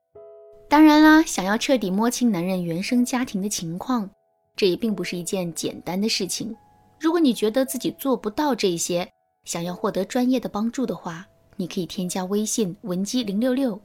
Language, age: Chinese, 20-39